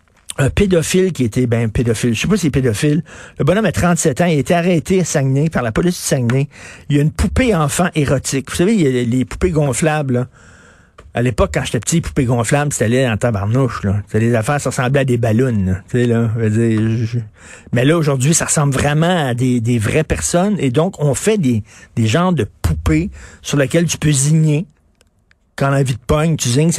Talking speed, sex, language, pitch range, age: 230 wpm, male, French, 120-160 Hz, 50-69